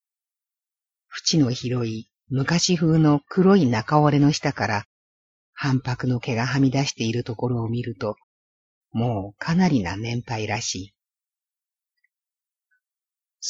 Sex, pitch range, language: female, 110-150 Hz, Japanese